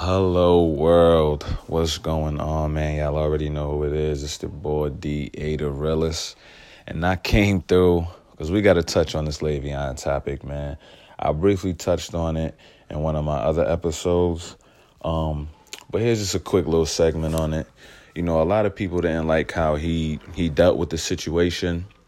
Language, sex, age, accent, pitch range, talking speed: English, male, 30-49, American, 75-85 Hz, 180 wpm